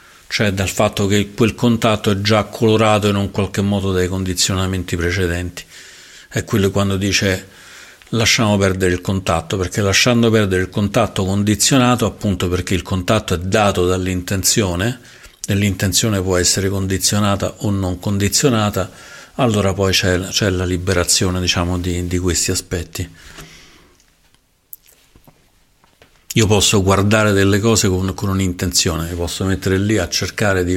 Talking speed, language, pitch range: 135 wpm, Italian, 90-105 Hz